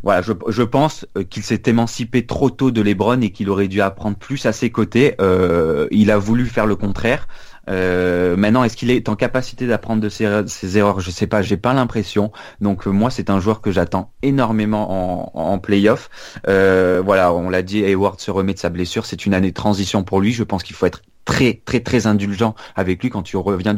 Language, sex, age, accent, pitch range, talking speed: French, male, 30-49, French, 95-115 Hz, 225 wpm